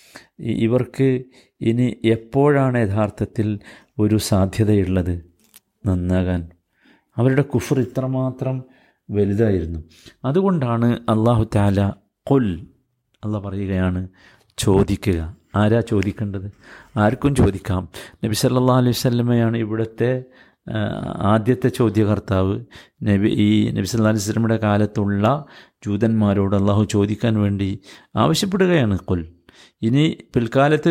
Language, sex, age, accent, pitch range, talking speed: Malayalam, male, 50-69, native, 105-135 Hz, 80 wpm